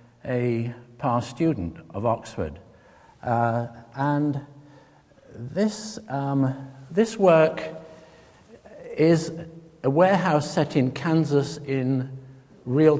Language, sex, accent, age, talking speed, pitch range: English, male, British, 60-79, 90 wpm, 120-155 Hz